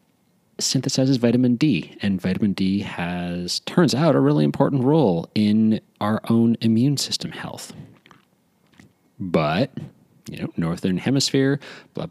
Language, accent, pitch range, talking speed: English, American, 90-110 Hz, 125 wpm